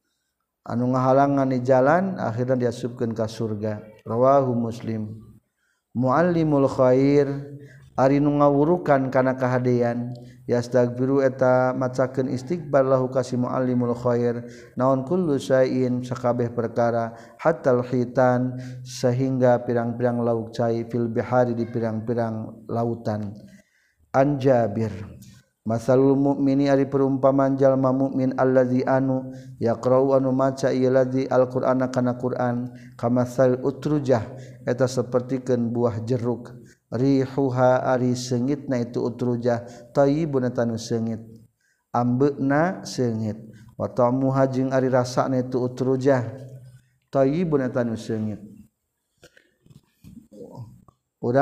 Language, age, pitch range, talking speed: Indonesian, 50-69, 120-135 Hz, 110 wpm